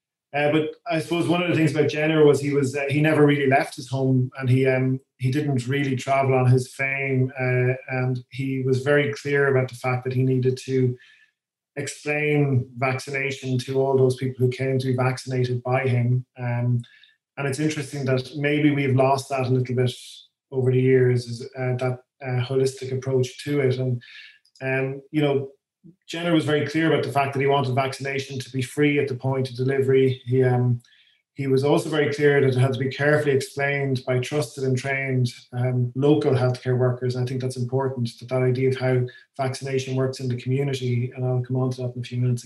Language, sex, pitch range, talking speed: English, male, 125-140 Hz, 210 wpm